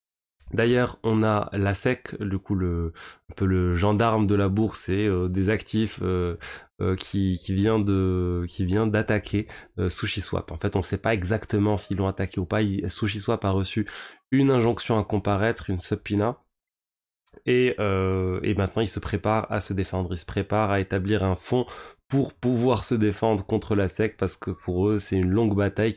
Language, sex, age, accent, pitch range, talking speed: French, male, 20-39, French, 95-110 Hz, 195 wpm